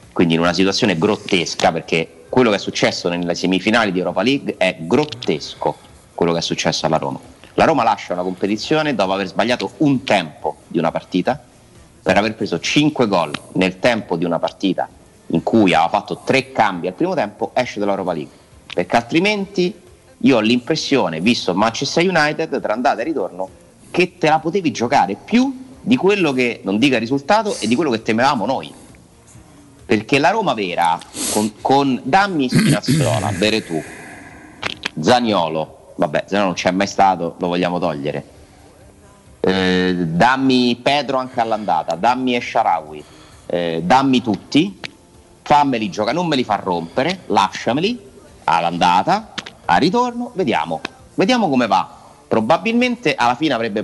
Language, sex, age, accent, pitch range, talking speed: Italian, male, 30-49, native, 90-135 Hz, 155 wpm